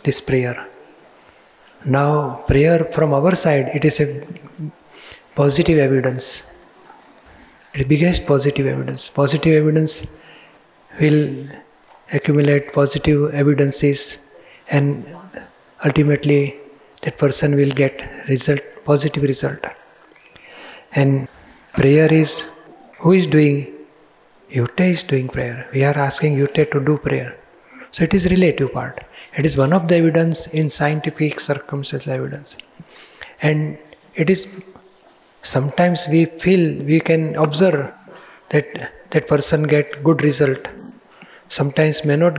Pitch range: 140-160 Hz